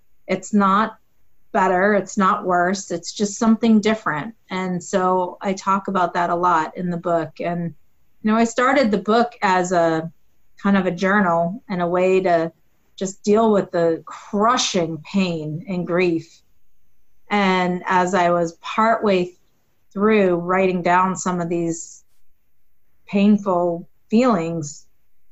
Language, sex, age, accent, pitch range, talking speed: English, female, 30-49, American, 175-205 Hz, 140 wpm